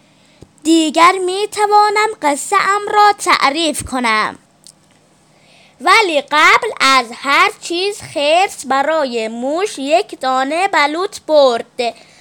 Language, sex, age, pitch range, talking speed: Persian, female, 20-39, 250-365 Hz, 95 wpm